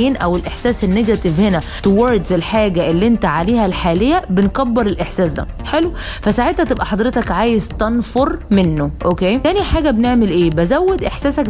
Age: 20-39